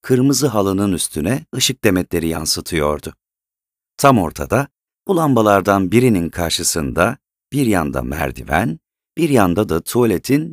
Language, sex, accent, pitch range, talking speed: Turkish, male, native, 80-115 Hz, 110 wpm